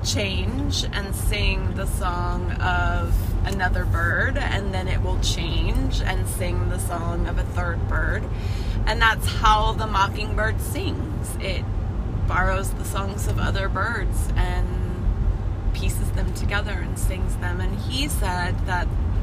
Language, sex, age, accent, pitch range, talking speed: English, female, 20-39, American, 95-105 Hz, 140 wpm